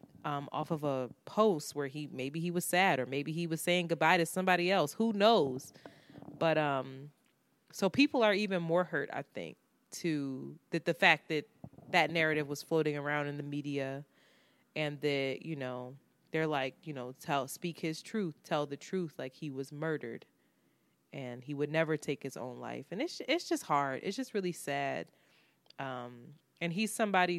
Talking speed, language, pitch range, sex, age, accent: 185 wpm, English, 140-165 Hz, female, 20-39, American